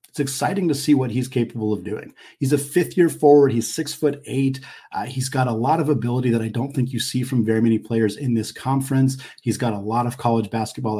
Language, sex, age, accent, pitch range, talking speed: English, male, 40-59, American, 120-150 Hz, 245 wpm